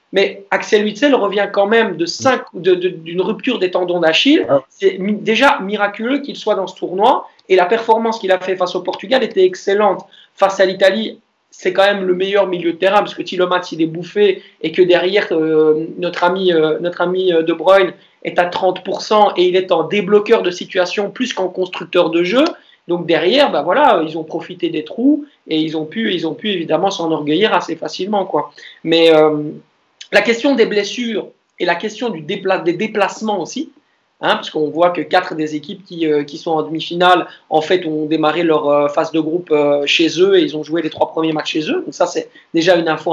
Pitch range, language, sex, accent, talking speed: 170-210 Hz, French, male, French, 215 wpm